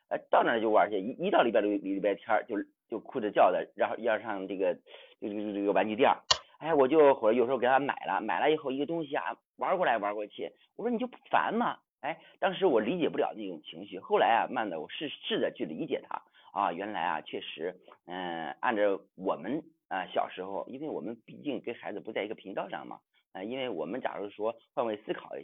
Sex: male